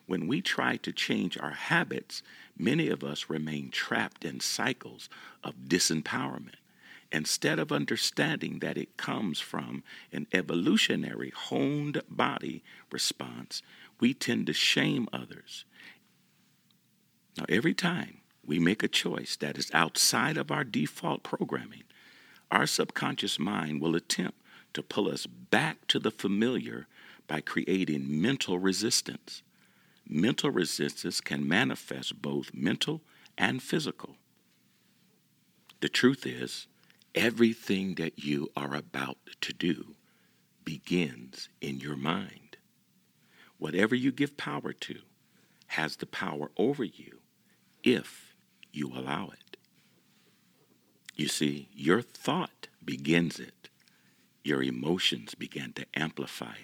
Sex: male